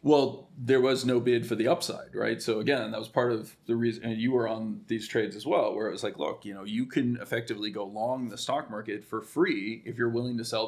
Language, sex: English, male